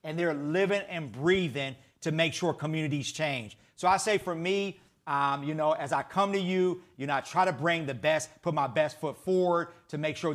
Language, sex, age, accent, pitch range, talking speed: English, male, 40-59, American, 150-195 Hz, 225 wpm